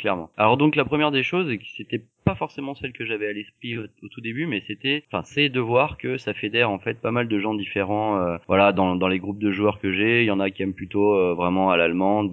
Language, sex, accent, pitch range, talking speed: French, male, French, 95-120 Hz, 275 wpm